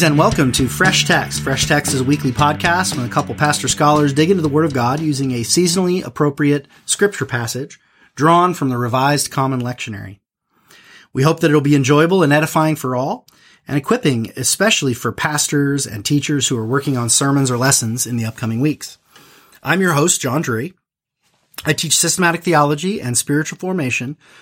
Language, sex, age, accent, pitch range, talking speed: English, male, 30-49, American, 125-155 Hz, 180 wpm